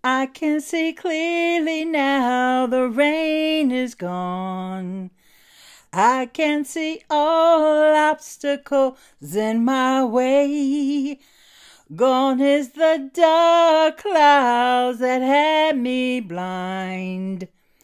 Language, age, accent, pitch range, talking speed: English, 40-59, American, 190-290 Hz, 85 wpm